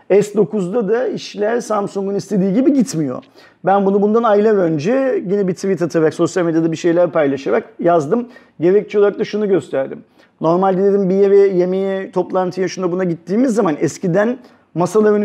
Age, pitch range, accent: 40-59, 155-195 Hz, native